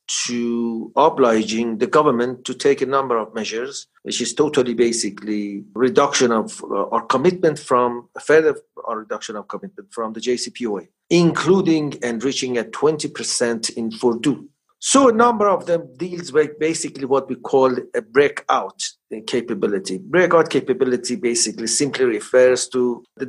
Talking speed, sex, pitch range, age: 140 wpm, male, 120-165 Hz, 50-69